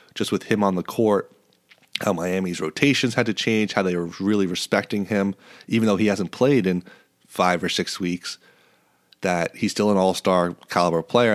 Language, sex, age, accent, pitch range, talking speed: English, male, 30-49, American, 90-110 Hz, 185 wpm